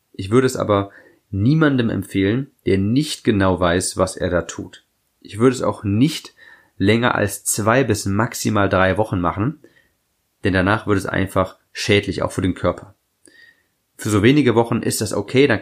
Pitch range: 95-120 Hz